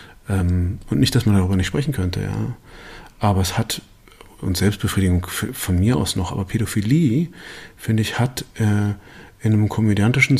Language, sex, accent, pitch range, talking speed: German, male, German, 95-125 Hz, 155 wpm